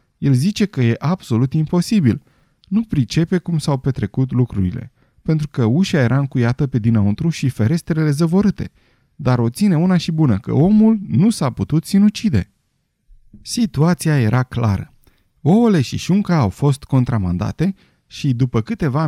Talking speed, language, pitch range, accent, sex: 145 wpm, Romanian, 115-165 Hz, native, male